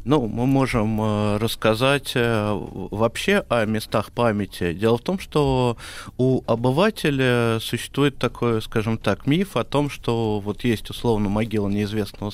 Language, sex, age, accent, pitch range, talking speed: Russian, male, 20-39, native, 105-130 Hz, 130 wpm